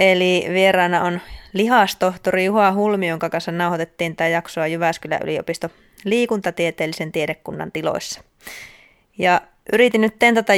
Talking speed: 115 wpm